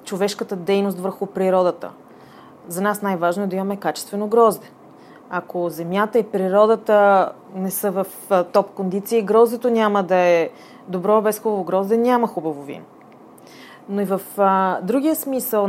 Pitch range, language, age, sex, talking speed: 190-225 Hz, Bulgarian, 30-49, female, 145 wpm